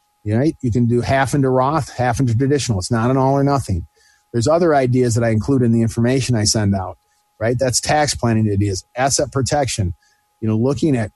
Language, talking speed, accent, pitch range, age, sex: English, 215 wpm, American, 115-145 Hz, 40-59, male